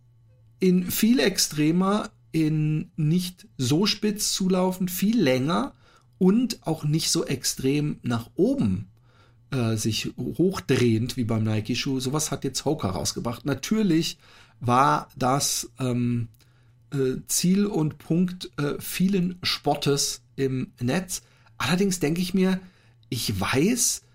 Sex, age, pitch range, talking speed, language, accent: male, 50-69, 115-150 Hz, 115 wpm, German, German